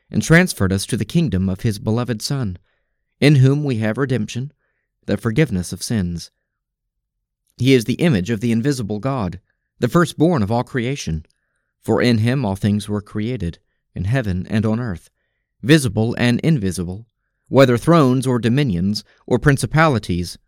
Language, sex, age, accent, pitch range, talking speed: English, male, 40-59, American, 105-140 Hz, 155 wpm